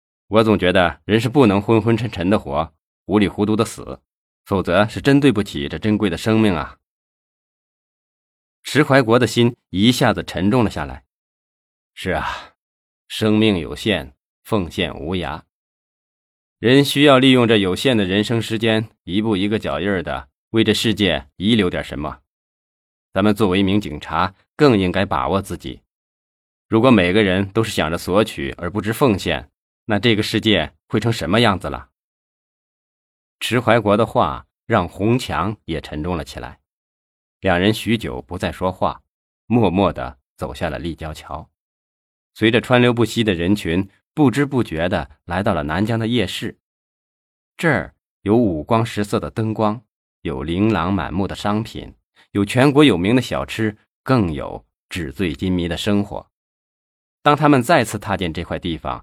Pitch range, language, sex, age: 85-115 Hz, Chinese, male, 20-39